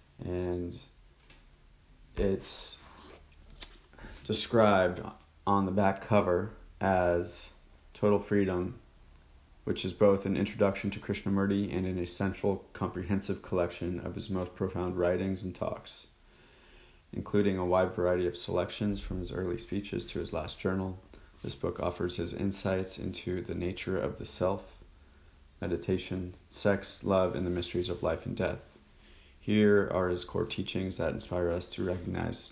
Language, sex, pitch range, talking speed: English, male, 85-95 Hz, 135 wpm